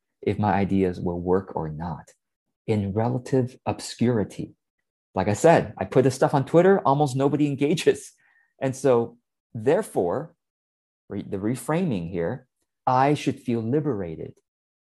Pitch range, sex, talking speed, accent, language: 95-130 Hz, male, 130 wpm, American, English